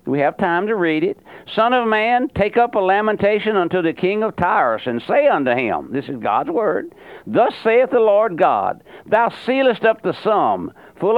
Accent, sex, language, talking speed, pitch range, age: American, male, English, 200 wpm, 170-225 Hz, 60-79